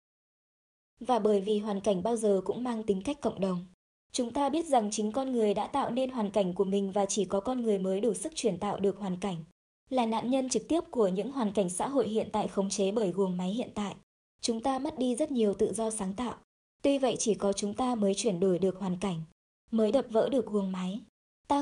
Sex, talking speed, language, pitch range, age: male, 245 wpm, Vietnamese, 200-245 Hz, 20-39